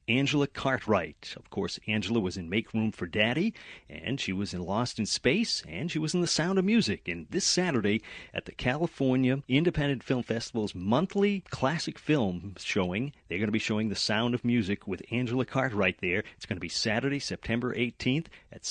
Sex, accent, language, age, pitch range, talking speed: male, American, English, 40-59, 100-130 Hz, 190 wpm